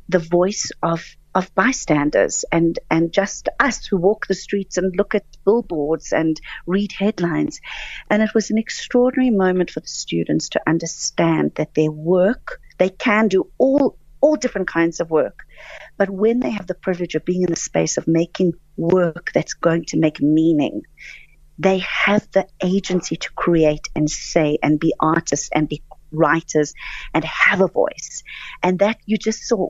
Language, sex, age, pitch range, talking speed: English, female, 40-59, 155-200 Hz, 170 wpm